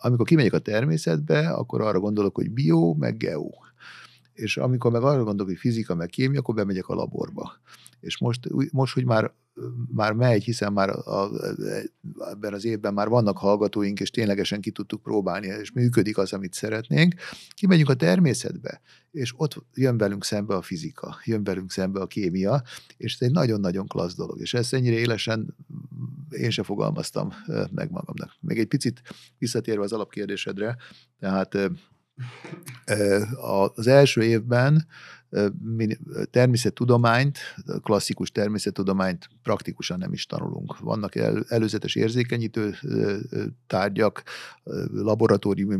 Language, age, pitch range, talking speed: Hungarian, 60-79, 100-125 Hz, 135 wpm